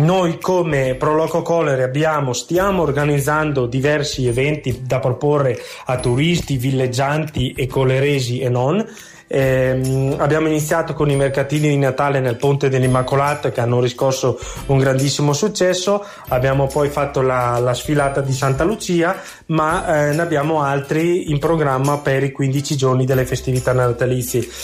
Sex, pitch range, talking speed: male, 130-155 Hz, 140 wpm